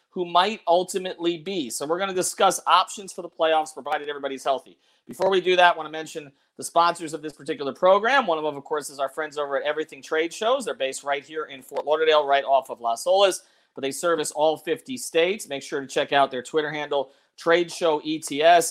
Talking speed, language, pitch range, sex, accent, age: 230 wpm, English, 140-170 Hz, male, American, 40-59